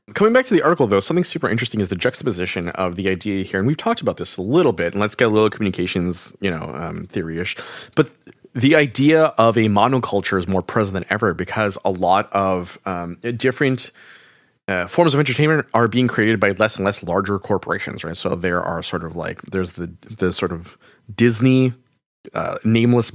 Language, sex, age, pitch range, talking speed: English, male, 30-49, 95-120 Hz, 205 wpm